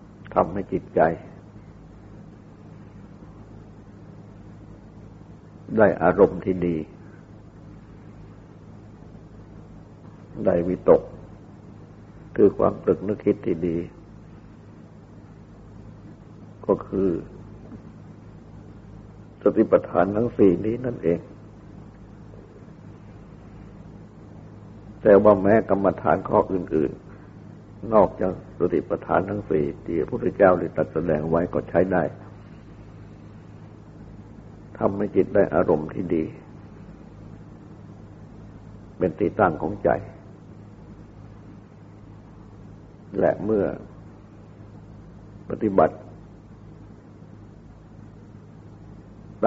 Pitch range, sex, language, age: 95-105 Hz, male, Thai, 60-79